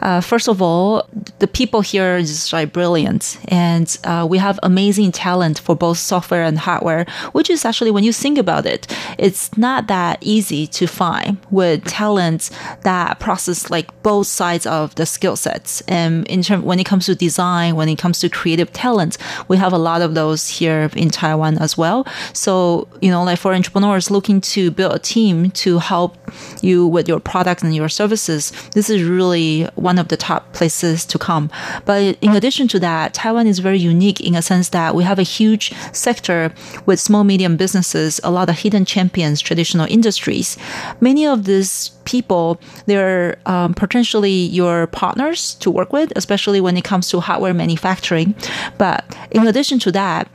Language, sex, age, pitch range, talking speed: English, female, 30-49, 170-205 Hz, 185 wpm